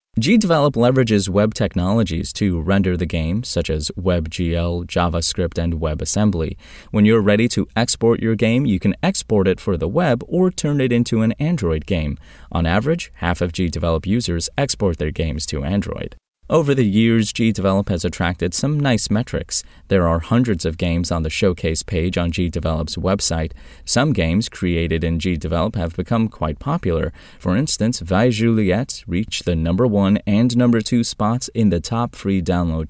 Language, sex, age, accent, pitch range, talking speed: English, male, 30-49, American, 85-110 Hz, 170 wpm